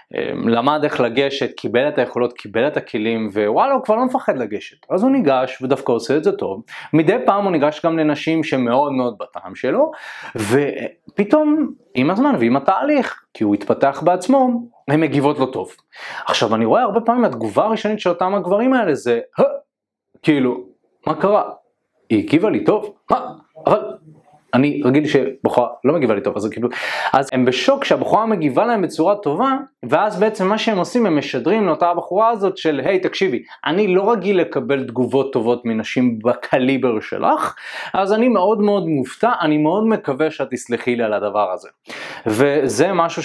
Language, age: Hebrew, 30-49